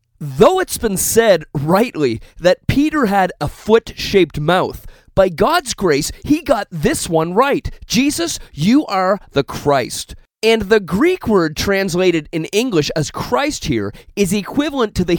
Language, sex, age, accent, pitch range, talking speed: English, male, 30-49, American, 170-240 Hz, 150 wpm